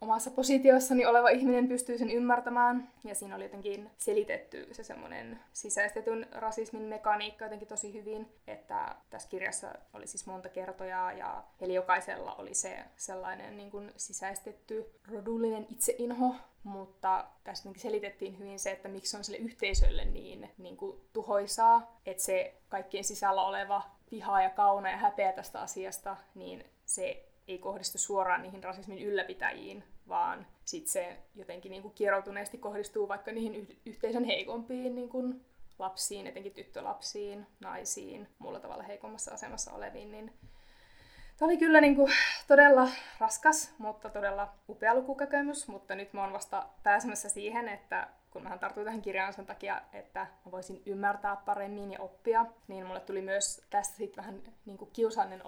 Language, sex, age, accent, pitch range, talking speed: Finnish, female, 20-39, native, 195-245 Hz, 145 wpm